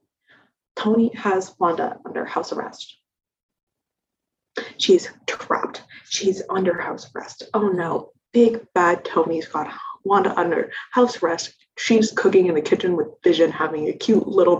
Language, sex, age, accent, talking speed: English, female, 20-39, American, 135 wpm